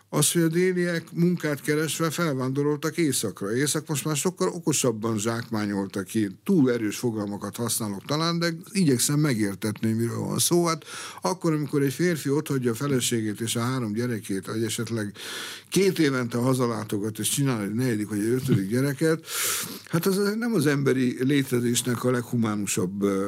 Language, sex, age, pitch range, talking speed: Hungarian, male, 60-79, 105-140 Hz, 155 wpm